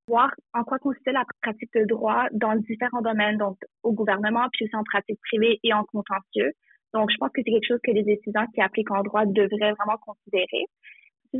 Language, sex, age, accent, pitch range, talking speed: French, female, 20-39, Canadian, 210-240 Hz, 210 wpm